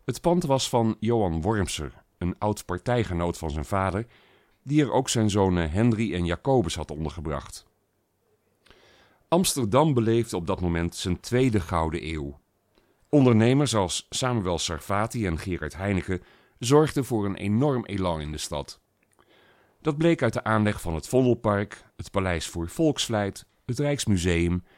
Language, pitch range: Dutch, 85-115 Hz